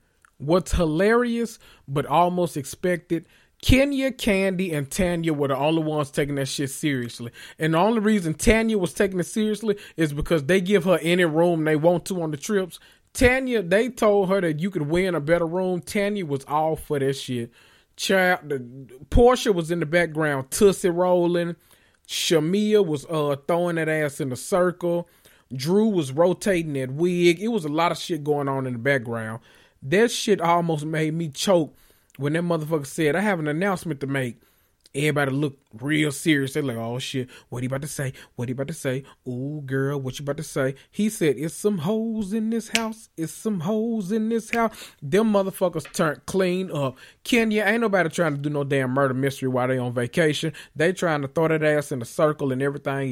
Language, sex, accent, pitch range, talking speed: English, male, American, 140-185 Hz, 200 wpm